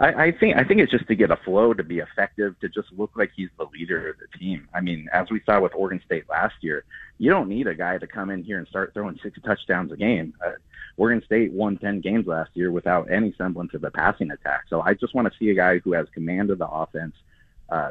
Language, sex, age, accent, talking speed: English, male, 30-49, American, 265 wpm